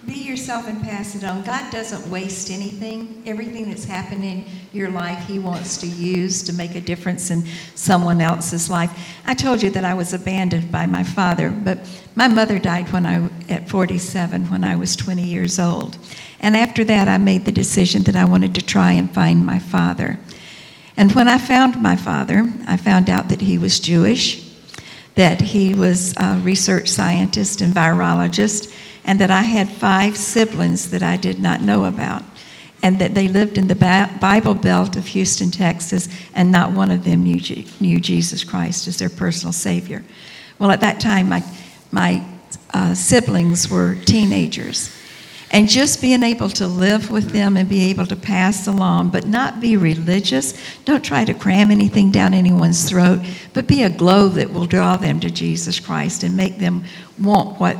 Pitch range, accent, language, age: 175-200 Hz, American, English, 60-79